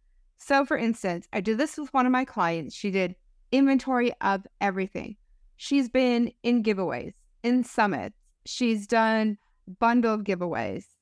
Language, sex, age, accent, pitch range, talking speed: English, female, 30-49, American, 190-245 Hz, 140 wpm